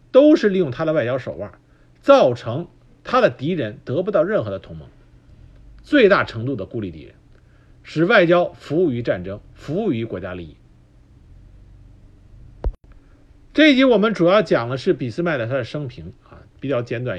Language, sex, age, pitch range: Chinese, male, 50-69, 105-155 Hz